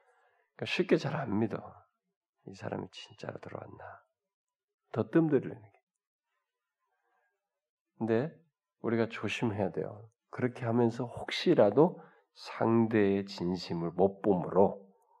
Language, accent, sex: Korean, native, male